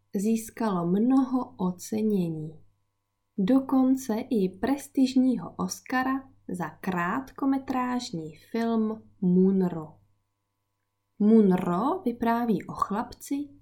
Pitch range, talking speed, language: 175-245 Hz, 65 wpm, Czech